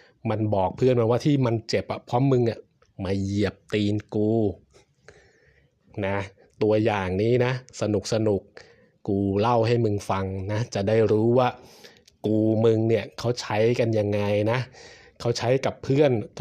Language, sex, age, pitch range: Thai, male, 20-39, 105-125 Hz